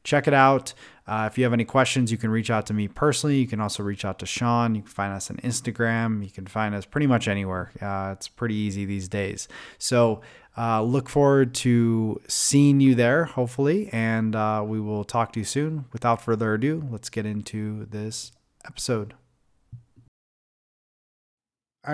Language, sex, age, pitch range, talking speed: English, male, 20-39, 115-135 Hz, 185 wpm